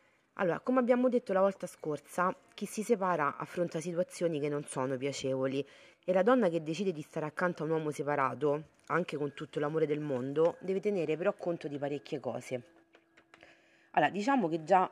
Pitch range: 145-175 Hz